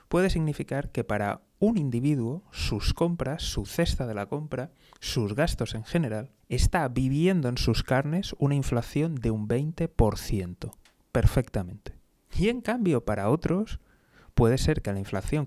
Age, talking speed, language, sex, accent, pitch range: 30-49, 145 wpm, Spanish, male, Spanish, 105-150 Hz